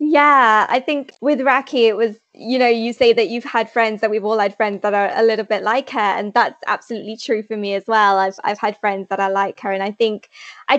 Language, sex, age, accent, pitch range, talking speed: English, female, 20-39, British, 215-255 Hz, 260 wpm